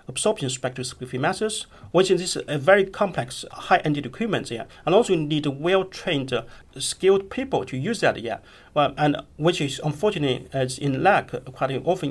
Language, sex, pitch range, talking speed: English, male, 130-165 Hz, 170 wpm